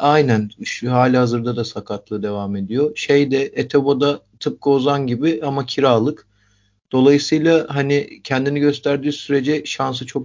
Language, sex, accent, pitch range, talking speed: Turkish, male, native, 115-145 Hz, 125 wpm